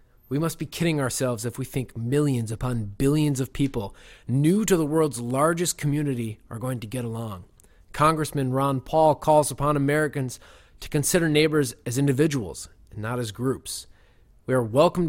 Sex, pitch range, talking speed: male, 110-140 Hz, 165 wpm